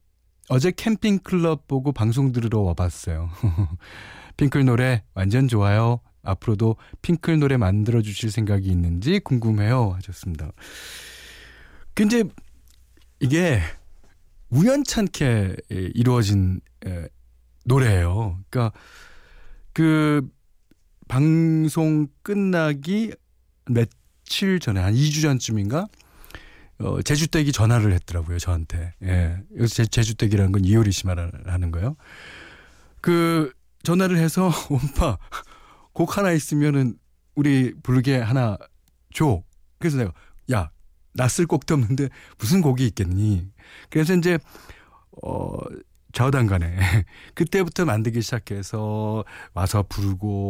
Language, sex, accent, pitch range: Korean, male, native, 95-145 Hz